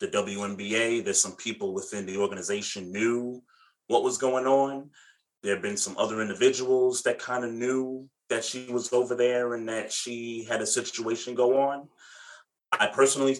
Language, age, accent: English, 30-49, American